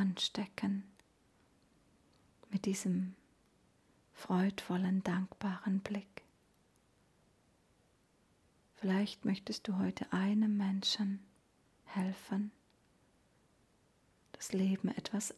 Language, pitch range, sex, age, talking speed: German, 190-210 Hz, female, 40-59, 60 wpm